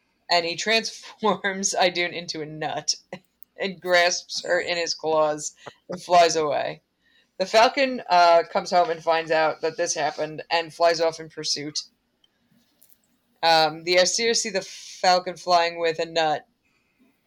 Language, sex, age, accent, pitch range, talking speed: English, female, 20-39, American, 165-230 Hz, 145 wpm